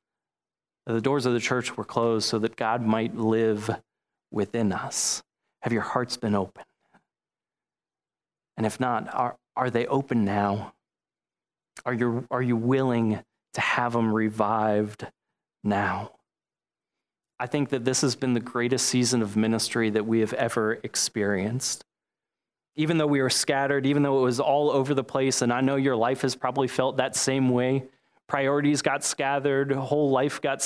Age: 30-49